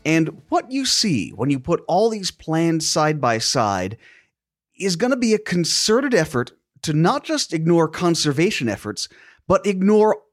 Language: English